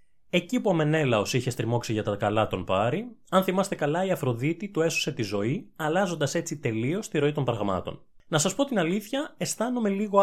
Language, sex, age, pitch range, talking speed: Greek, male, 20-39, 110-165 Hz, 200 wpm